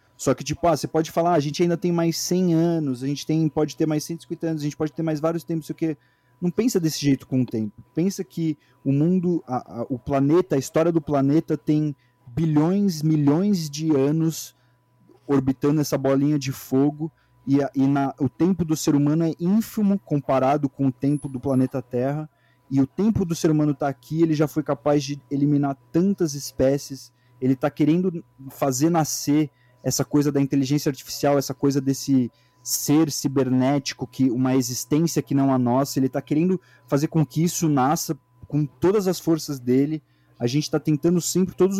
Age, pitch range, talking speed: 30-49, 135-160 Hz, 195 wpm